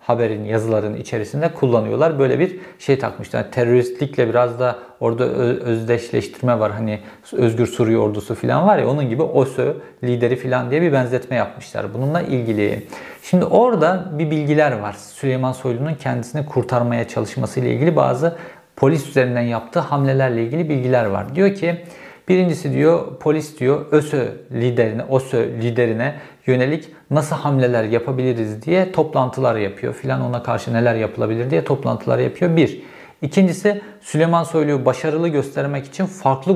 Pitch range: 120-160 Hz